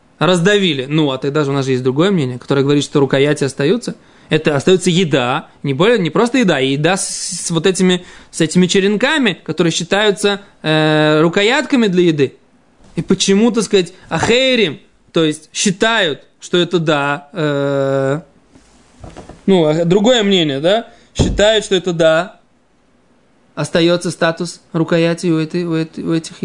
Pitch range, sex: 160-210 Hz, male